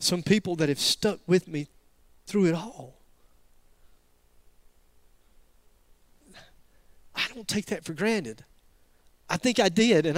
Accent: American